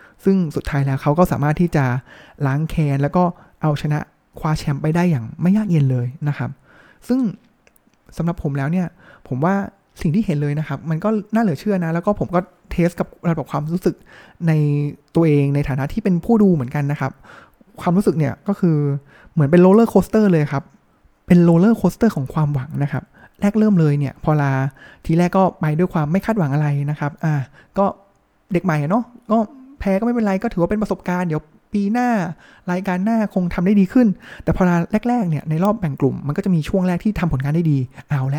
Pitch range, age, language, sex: 145-190 Hz, 20-39, Thai, male